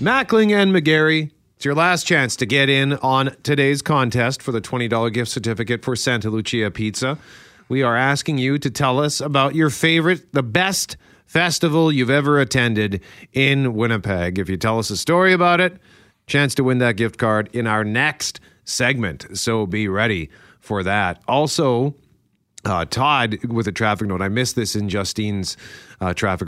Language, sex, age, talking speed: English, male, 40-59, 175 wpm